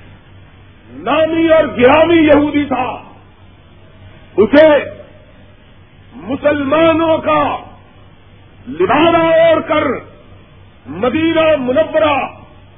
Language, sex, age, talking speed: Urdu, male, 50-69, 60 wpm